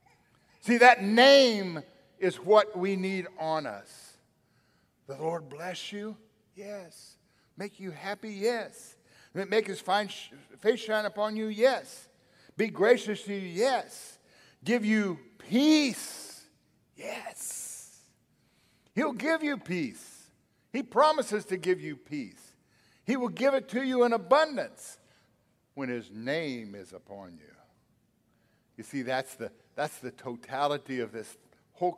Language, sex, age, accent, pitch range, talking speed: English, male, 50-69, American, 150-230 Hz, 130 wpm